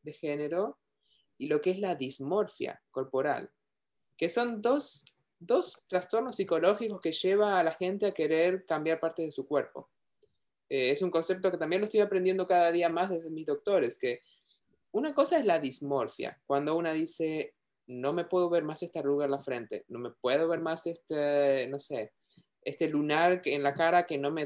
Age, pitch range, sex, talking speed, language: 20-39, 145-185 Hz, male, 190 wpm, Spanish